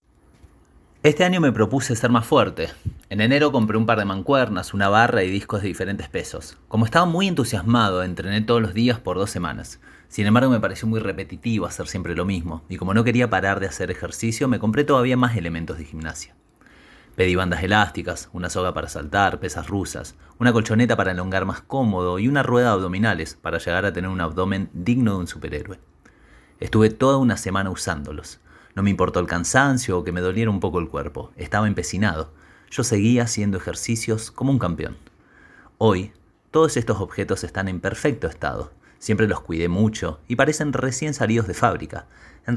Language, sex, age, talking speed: Spanish, male, 30-49, 185 wpm